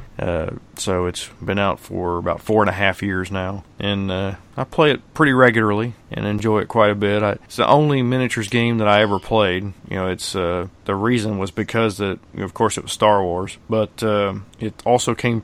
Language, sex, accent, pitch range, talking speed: English, male, American, 100-115 Hz, 215 wpm